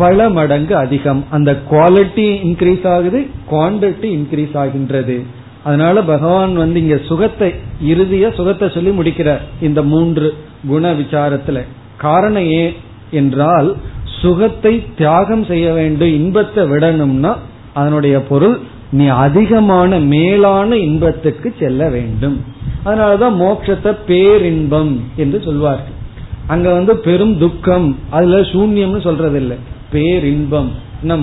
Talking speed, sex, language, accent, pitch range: 100 wpm, male, Tamil, native, 140-185 Hz